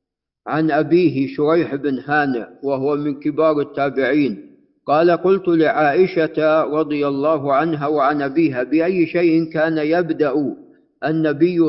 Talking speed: 115 wpm